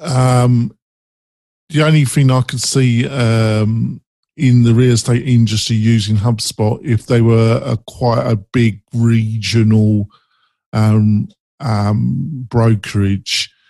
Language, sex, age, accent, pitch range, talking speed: English, male, 50-69, British, 110-125 Hz, 115 wpm